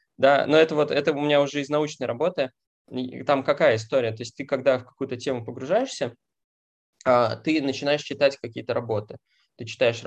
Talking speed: 175 wpm